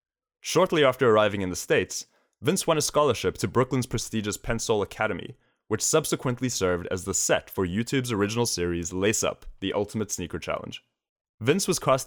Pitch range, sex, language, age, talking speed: 95-130 Hz, male, English, 20-39, 170 wpm